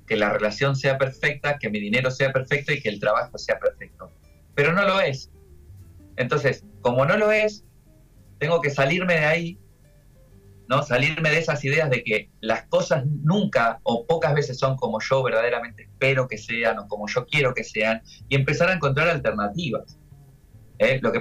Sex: male